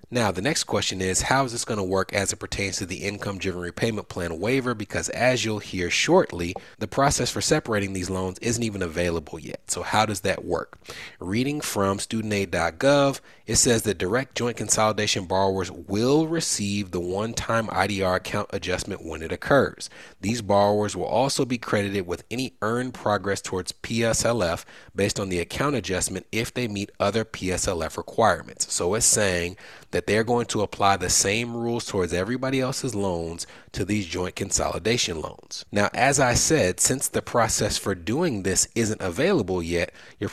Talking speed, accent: 175 wpm, American